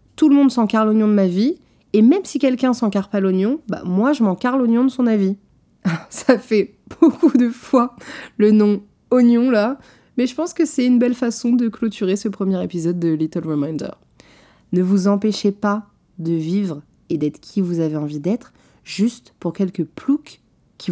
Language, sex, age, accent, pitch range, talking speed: French, female, 30-49, French, 175-235 Hz, 195 wpm